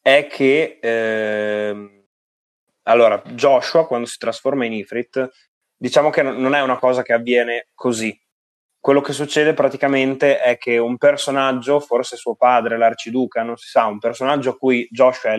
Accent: native